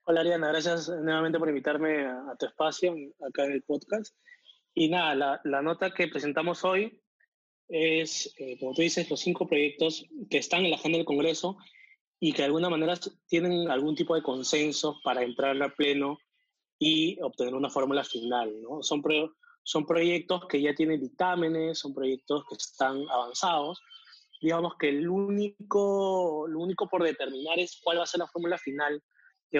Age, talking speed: 20-39, 175 wpm